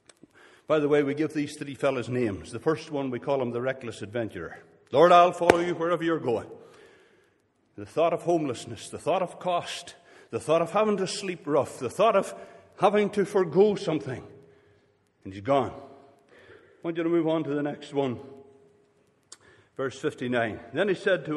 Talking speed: 185 wpm